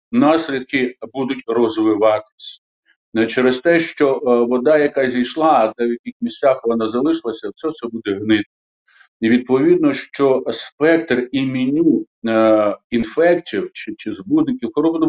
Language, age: Ukrainian, 50-69